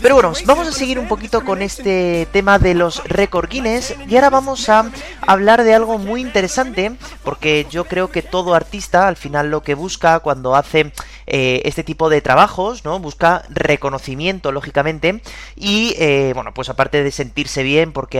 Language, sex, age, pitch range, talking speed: Spanish, male, 30-49, 155-210 Hz, 170 wpm